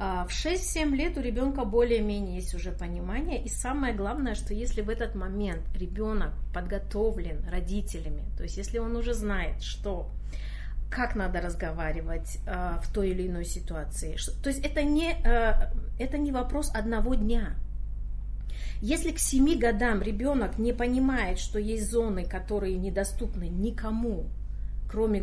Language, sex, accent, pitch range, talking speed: Russian, female, native, 185-235 Hz, 135 wpm